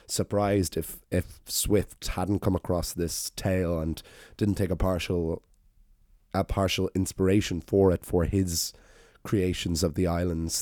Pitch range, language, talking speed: 85-100 Hz, English, 140 wpm